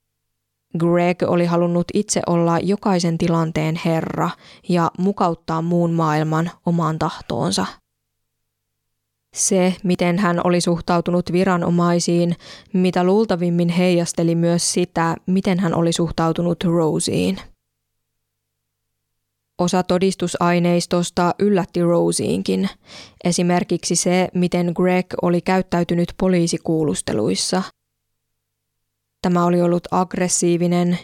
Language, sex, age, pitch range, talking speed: Finnish, female, 20-39, 155-180 Hz, 85 wpm